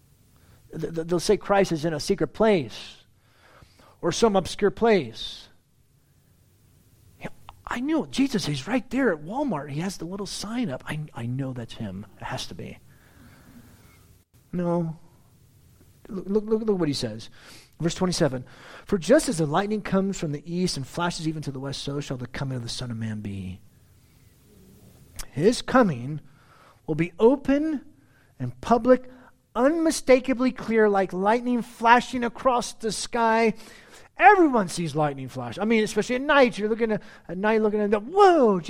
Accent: American